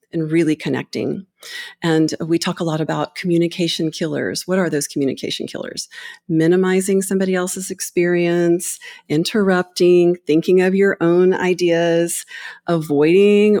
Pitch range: 155-195 Hz